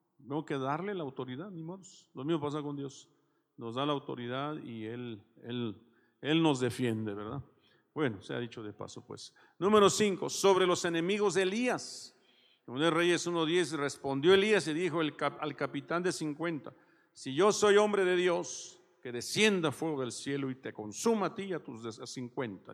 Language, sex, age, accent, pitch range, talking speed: Spanish, male, 50-69, Mexican, 130-175 Hz, 195 wpm